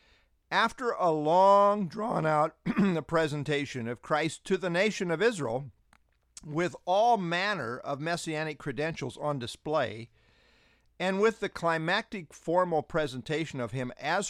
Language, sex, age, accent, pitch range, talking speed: English, male, 50-69, American, 125-195 Hz, 125 wpm